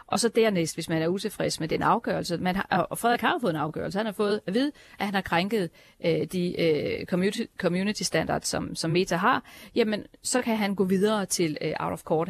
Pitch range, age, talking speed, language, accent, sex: 165-205 Hz, 40-59, 235 wpm, Danish, native, female